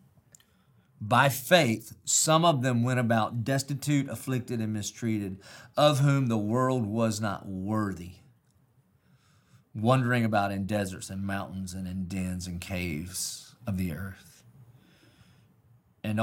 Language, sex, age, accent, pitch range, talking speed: English, male, 40-59, American, 105-130 Hz, 120 wpm